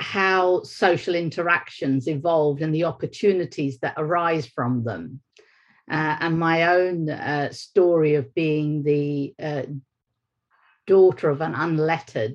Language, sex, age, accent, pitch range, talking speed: English, female, 50-69, British, 140-165 Hz, 120 wpm